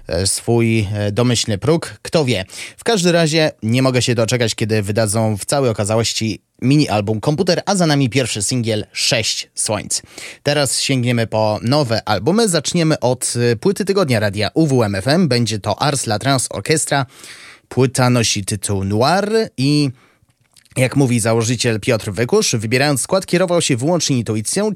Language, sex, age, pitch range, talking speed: Polish, male, 20-39, 110-150 Hz, 145 wpm